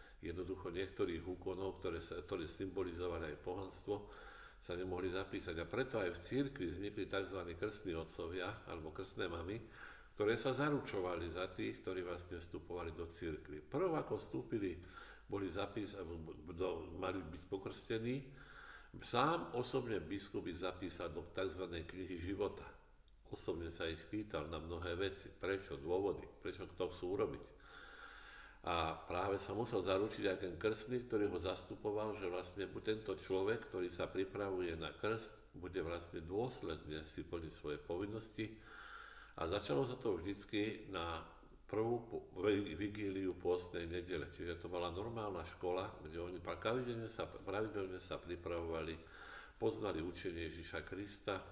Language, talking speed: Slovak, 135 wpm